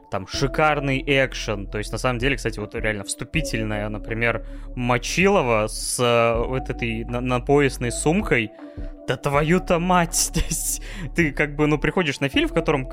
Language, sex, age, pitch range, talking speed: Russian, male, 20-39, 115-150 Hz, 145 wpm